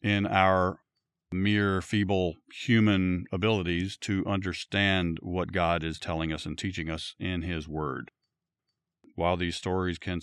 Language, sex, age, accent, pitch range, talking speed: English, male, 40-59, American, 90-110 Hz, 135 wpm